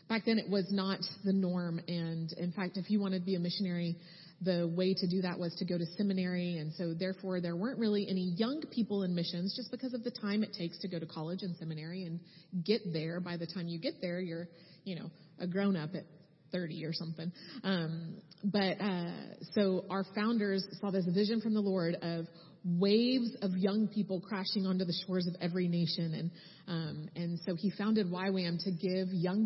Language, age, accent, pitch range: English, 30-49, American, 170-200 Hz